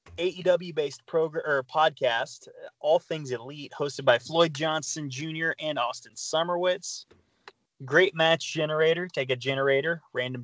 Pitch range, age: 130-165 Hz, 20-39